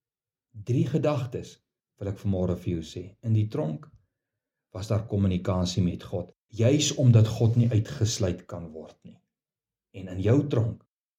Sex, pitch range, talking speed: male, 110-140 Hz, 150 wpm